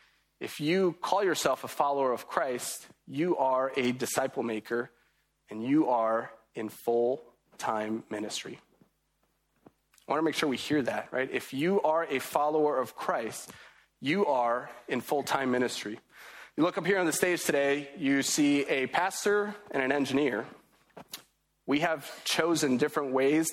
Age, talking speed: 30-49, 155 wpm